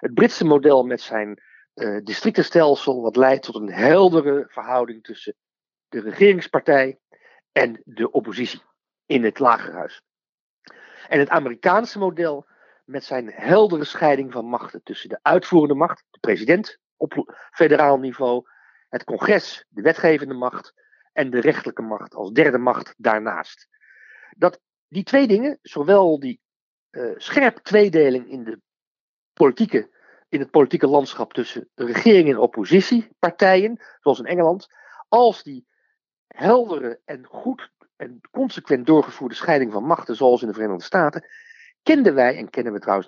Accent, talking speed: Dutch, 140 wpm